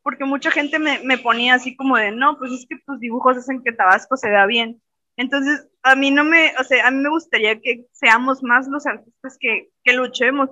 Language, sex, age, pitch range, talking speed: Spanish, female, 20-39, 225-275 Hz, 230 wpm